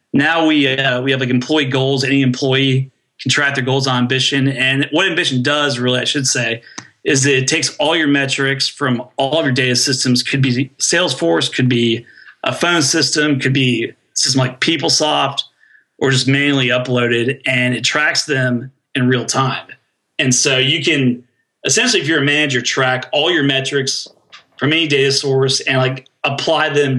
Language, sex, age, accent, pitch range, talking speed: English, male, 30-49, American, 125-140 Hz, 185 wpm